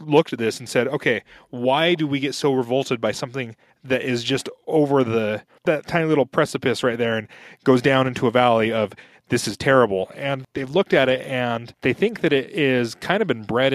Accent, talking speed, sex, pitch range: American, 220 wpm, male, 115-145 Hz